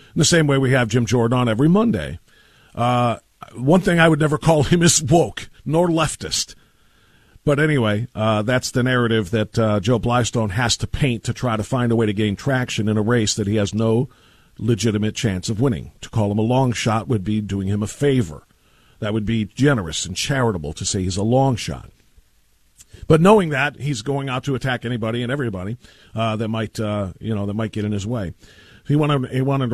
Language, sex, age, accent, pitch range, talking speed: English, male, 50-69, American, 110-145 Hz, 215 wpm